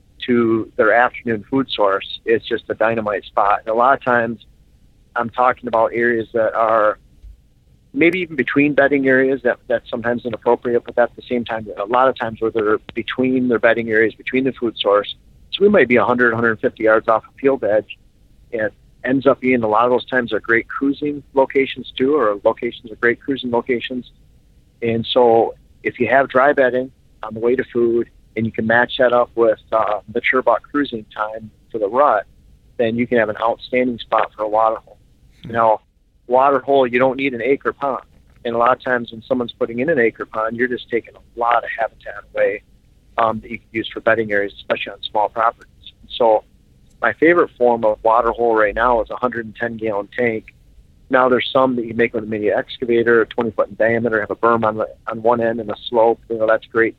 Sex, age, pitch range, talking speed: male, 40-59, 110-125 Hz, 215 wpm